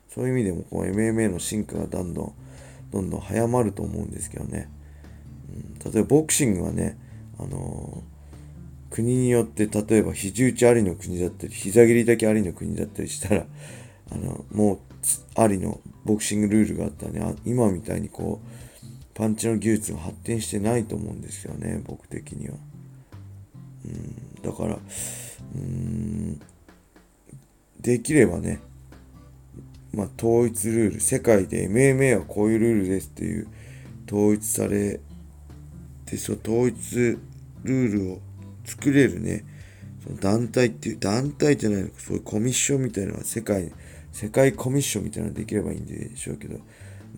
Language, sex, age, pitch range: Japanese, male, 40-59, 95-120 Hz